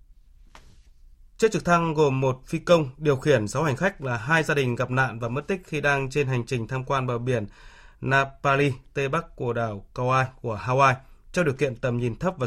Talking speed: 215 wpm